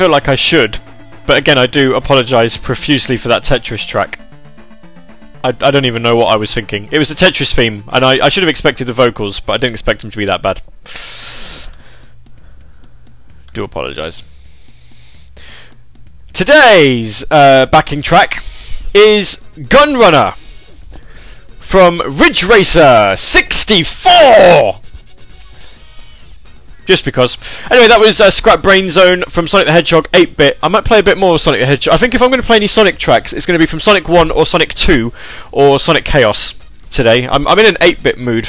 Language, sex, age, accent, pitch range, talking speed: English, male, 20-39, British, 115-175 Hz, 170 wpm